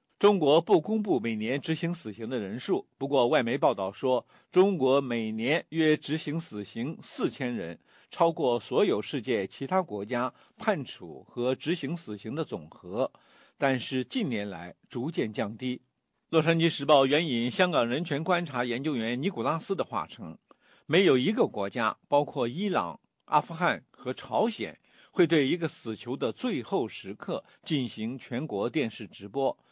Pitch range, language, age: 120-175 Hz, English, 50-69